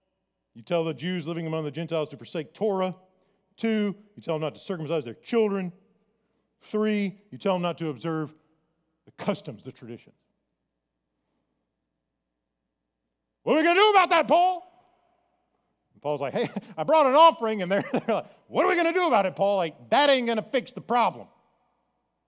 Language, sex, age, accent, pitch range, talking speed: English, male, 40-59, American, 120-190 Hz, 185 wpm